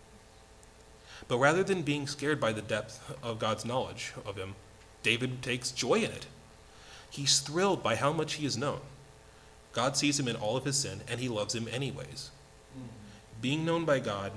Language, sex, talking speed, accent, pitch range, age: English, male, 180 wpm, American, 115-135 Hz, 30-49